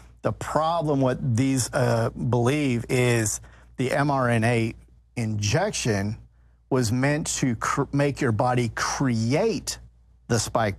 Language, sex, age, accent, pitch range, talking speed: English, male, 50-69, American, 100-135 Hz, 105 wpm